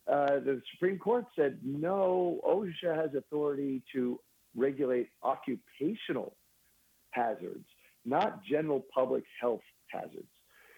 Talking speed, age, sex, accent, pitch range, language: 100 wpm, 50-69, male, American, 115-150 Hz, English